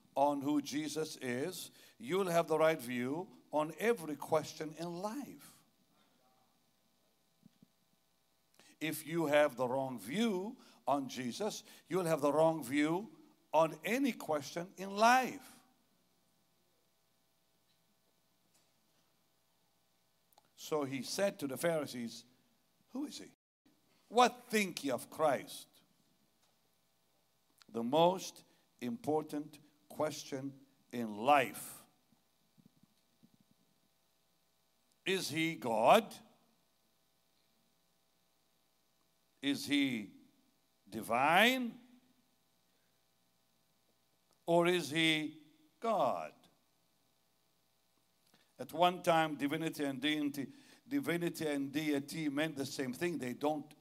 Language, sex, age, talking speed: English, male, 60-79, 85 wpm